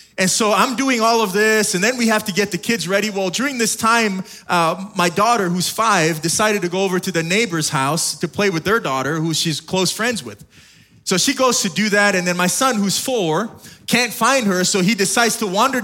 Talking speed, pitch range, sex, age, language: 240 wpm, 185-235 Hz, male, 20-39, English